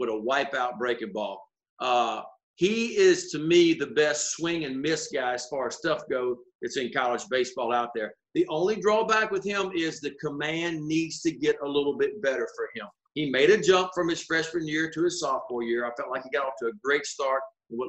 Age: 40-59